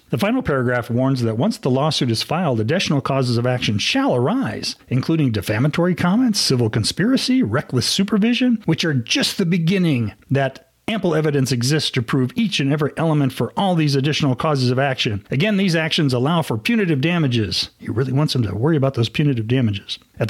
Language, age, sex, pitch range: English, 40-59, male, 125-165 Hz